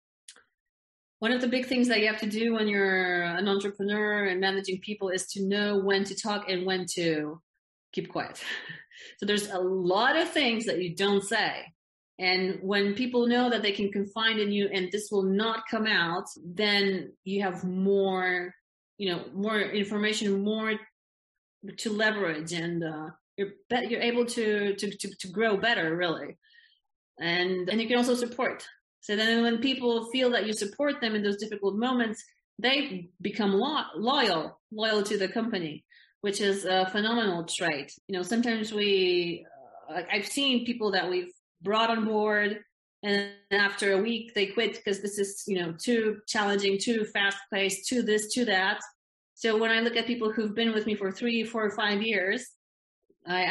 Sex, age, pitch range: female, 30-49, 195-225 Hz